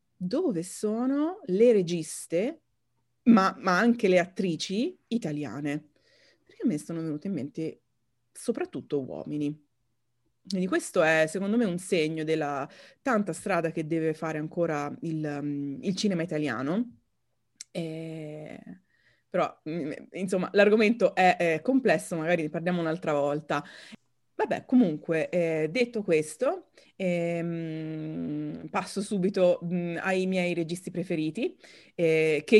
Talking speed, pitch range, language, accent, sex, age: 115 wpm, 155-215 Hz, Italian, native, female, 30-49